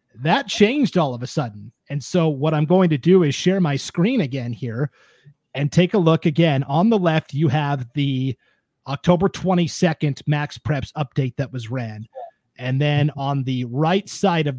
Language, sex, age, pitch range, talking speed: English, male, 30-49, 130-170 Hz, 185 wpm